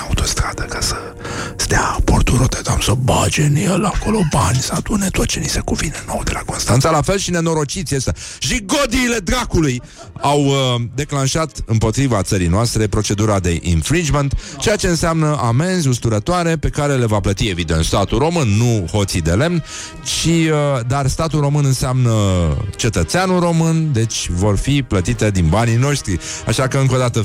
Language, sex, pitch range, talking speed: Romanian, male, 105-140 Hz, 170 wpm